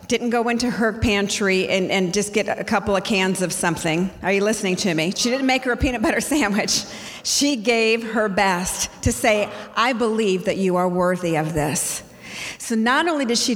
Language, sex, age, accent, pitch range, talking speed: English, female, 50-69, American, 185-230 Hz, 210 wpm